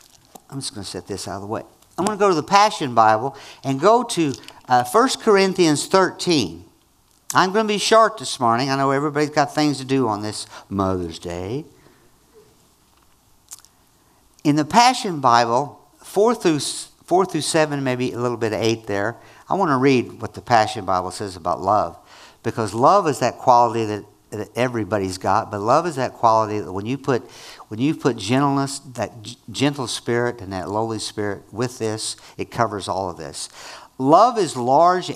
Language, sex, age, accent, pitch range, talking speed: English, male, 50-69, American, 105-145 Hz, 190 wpm